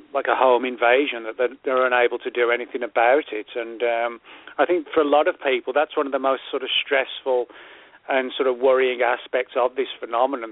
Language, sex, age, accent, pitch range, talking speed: English, male, 40-59, British, 125-145 Hz, 210 wpm